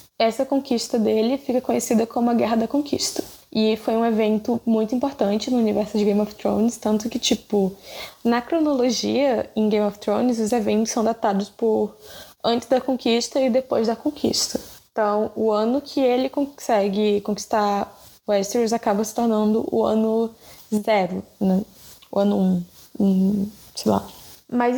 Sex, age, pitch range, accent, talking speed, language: female, 10-29, 210-245 Hz, Brazilian, 155 wpm, Portuguese